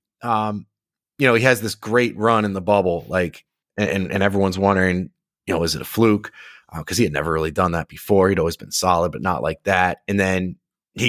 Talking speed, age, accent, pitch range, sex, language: 225 wpm, 20-39, American, 90-120 Hz, male, English